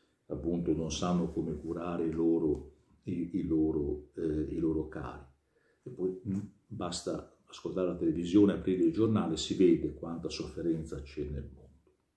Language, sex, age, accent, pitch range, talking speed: Italian, male, 50-69, native, 80-120 Hz, 155 wpm